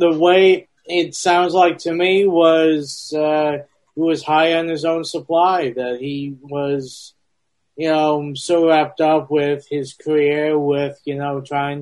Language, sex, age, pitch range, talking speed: English, male, 30-49, 135-160 Hz, 155 wpm